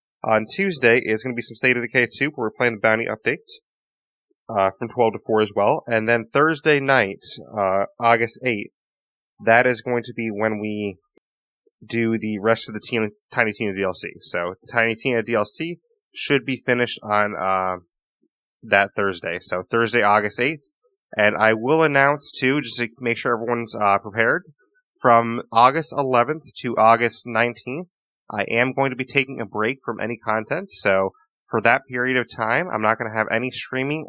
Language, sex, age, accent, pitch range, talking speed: English, male, 30-49, American, 105-130 Hz, 185 wpm